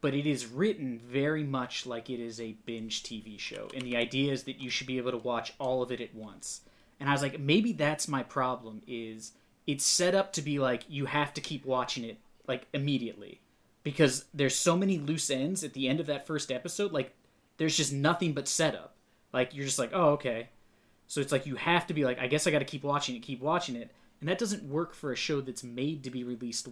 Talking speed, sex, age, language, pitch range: 245 wpm, male, 20-39, English, 120-150 Hz